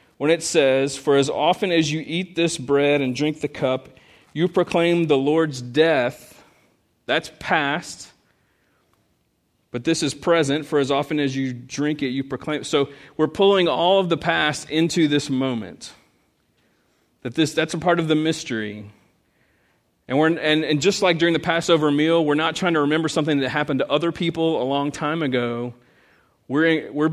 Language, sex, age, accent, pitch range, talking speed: English, male, 40-59, American, 135-160 Hz, 175 wpm